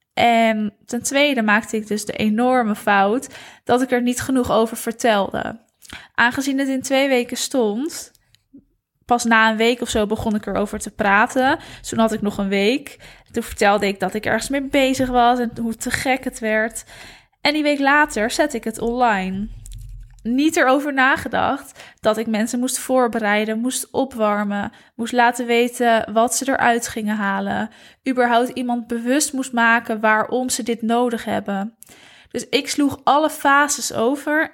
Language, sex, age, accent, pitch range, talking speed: Dutch, female, 10-29, Dutch, 215-260 Hz, 165 wpm